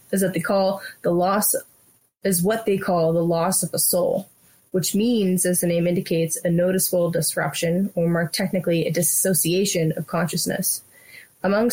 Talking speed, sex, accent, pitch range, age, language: 165 wpm, female, American, 165-195 Hz, 20-39, English